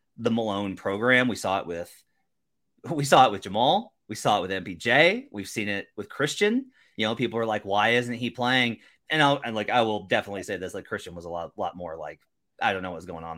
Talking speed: 240 wpm